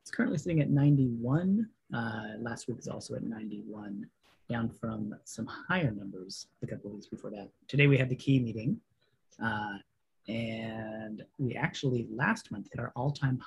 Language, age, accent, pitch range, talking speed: English, 30-49, American, 110-140 Hz, 165 wpm